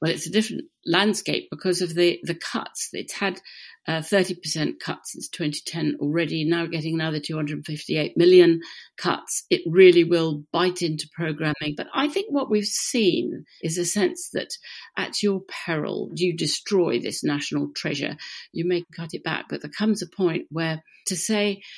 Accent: British